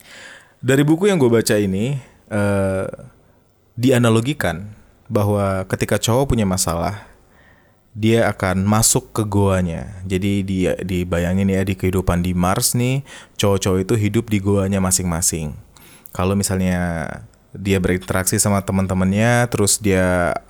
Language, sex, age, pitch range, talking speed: Indonesian, male, 20-39, 95-115 Hz, 120 wpm